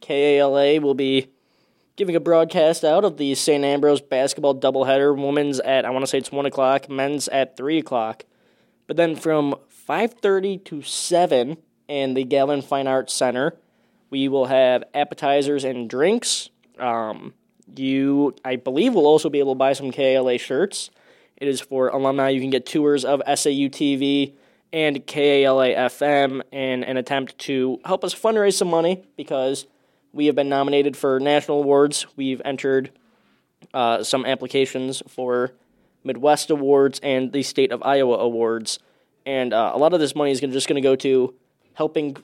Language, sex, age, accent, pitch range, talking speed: English, male, 20-39, American, 130-145 Hz, 160 wpm